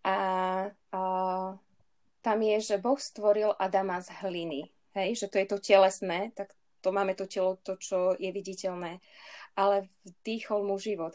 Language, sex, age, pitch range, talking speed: Slovak, female, 20-39, 185-210 Hz, 155 wpm